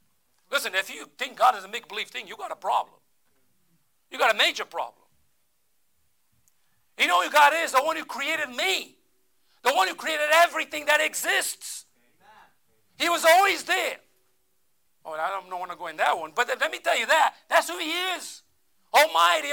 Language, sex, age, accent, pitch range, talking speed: English, male, 50-69, American, 185-275 Hz, 185 wpm